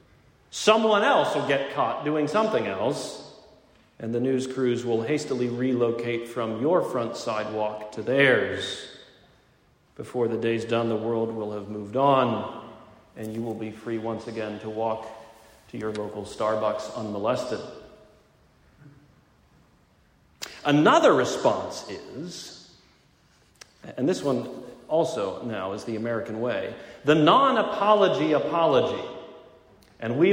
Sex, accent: male, American